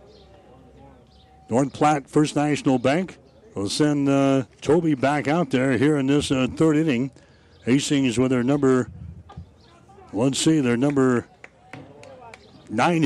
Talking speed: 130 wpm